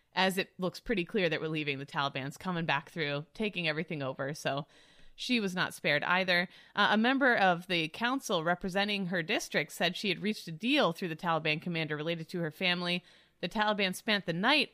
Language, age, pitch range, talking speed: English, 30-49, 165-220 Hz, 205 wpm